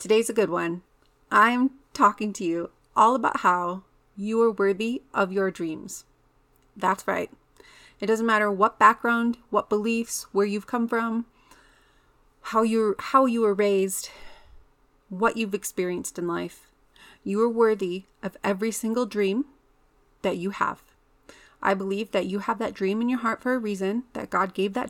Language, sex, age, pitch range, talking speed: English, female, 30-49, 195-230 Hz, 165 wpm